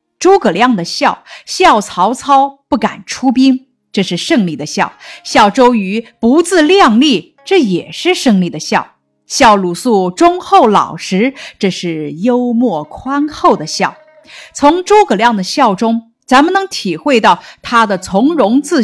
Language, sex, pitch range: Chinese, female, 180-265 Hz